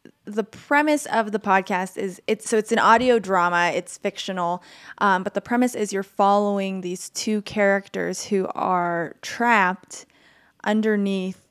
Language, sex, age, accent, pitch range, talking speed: English, female, 20-39, American, 180-210 Hz, 145 wpm